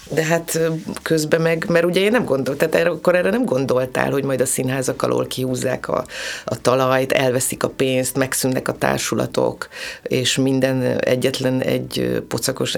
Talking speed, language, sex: 155 wpm, Hungarian, female